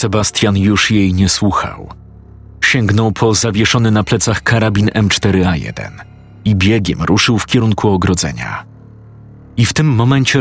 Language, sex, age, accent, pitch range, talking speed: Polish, male, 40-59, native, 95-115 Hz, 125 wpm